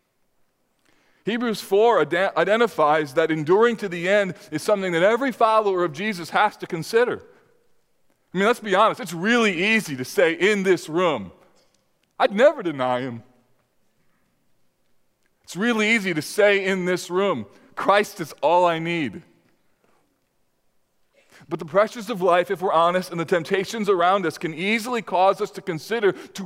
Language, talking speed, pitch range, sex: English, 155 wpm, 160-210 Hz, male